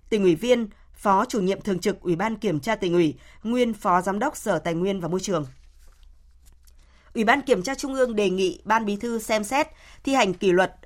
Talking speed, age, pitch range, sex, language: 225 wpm, 20-39, 180-230 Hz, female, Vietnamese